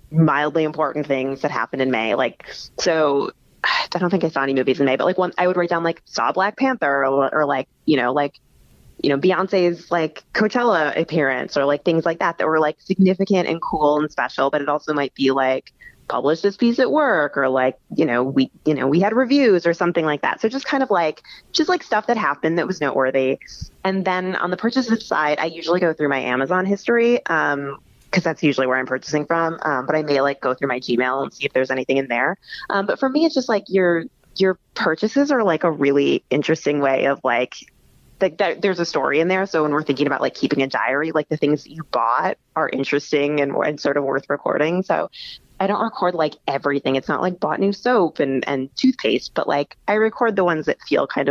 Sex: female